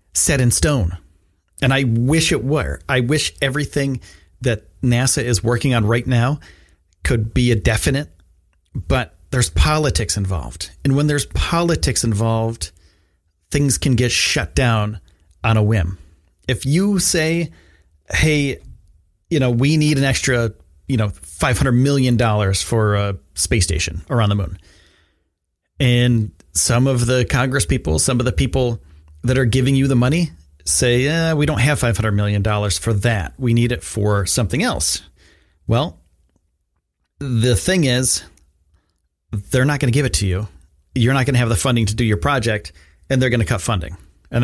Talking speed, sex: 165 wpm, male